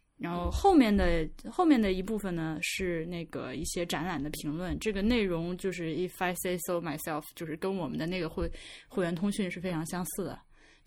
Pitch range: 170-220 Hz